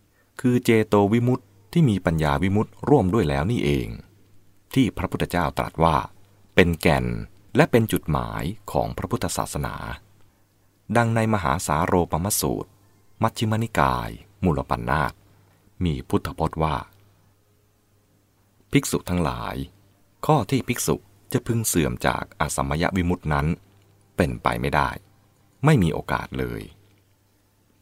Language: English